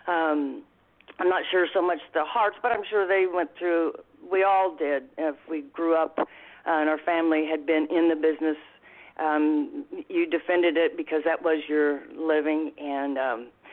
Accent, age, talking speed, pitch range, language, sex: American, 50-69, 180 wpm, 155-185 Hz, English, female